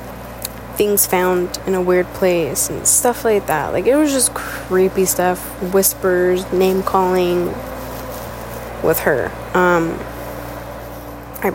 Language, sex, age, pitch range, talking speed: English, female, 10-29, 180-220 Hz, 120 wpm